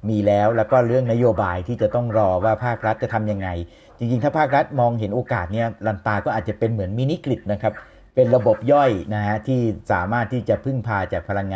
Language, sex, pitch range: Thai, male, 105-125 Hz